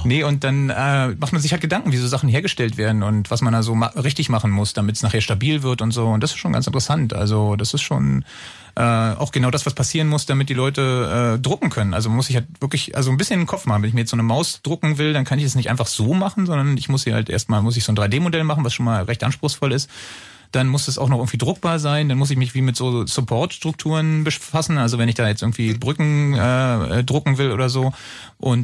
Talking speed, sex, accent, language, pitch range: 270 wpm, male, German, German, 115-145 Hz